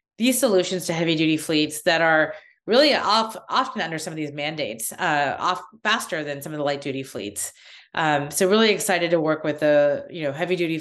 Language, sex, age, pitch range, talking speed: English, female, 30-49, 155-195 Hz, 210 wpm